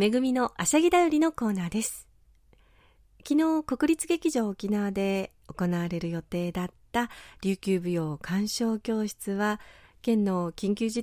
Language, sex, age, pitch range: Japanese, female, 40-59, 175-255 Hz